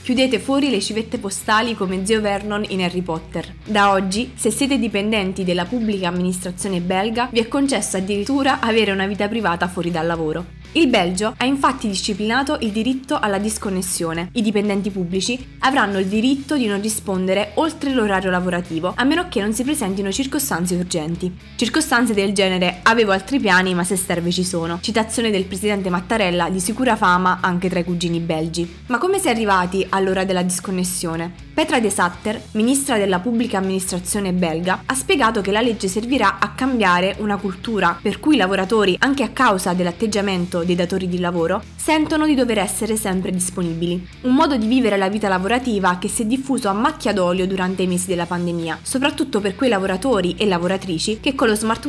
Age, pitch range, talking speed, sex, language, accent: 20-39, 180-235 Hz, 180 wpm, female, Italian, native